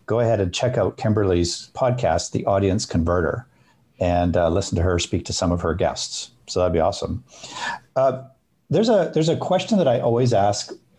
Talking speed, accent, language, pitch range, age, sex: 190 wpm, American, English, 90-120 Hz, 50-69, male